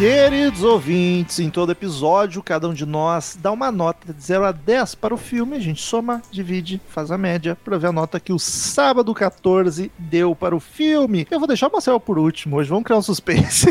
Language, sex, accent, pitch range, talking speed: Portuguese, male, Brazilian, 165-215 Hz, 220 wpm